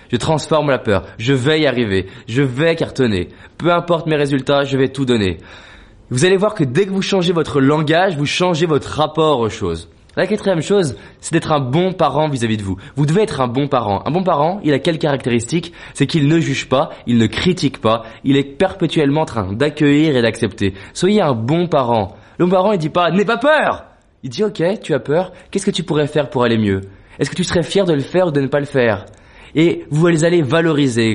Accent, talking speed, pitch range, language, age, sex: French, 240 wpm, 125-175 Hz, French, 20-39, male